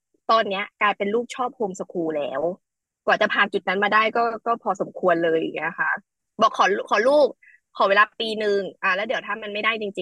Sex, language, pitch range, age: female, Thai, 205-275 Hz, 20-39